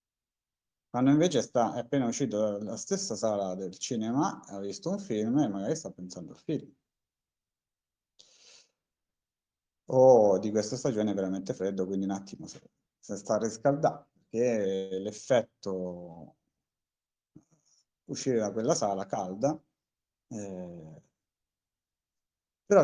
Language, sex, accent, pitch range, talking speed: Italian, male, native, 95-130 Hz, 120 wpm